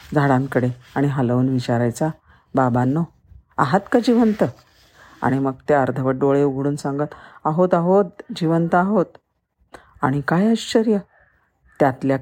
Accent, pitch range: native, 140-180 Hz